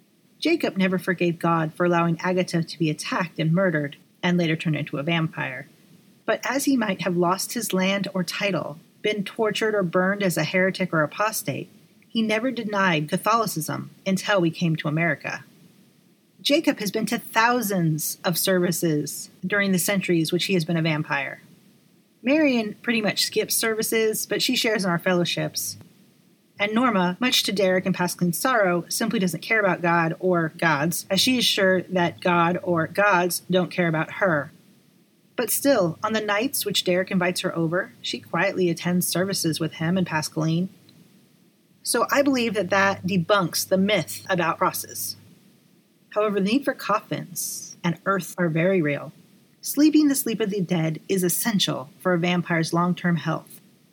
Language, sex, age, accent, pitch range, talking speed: English, female, 30-49, American, 170-205 Hz, 170 wpm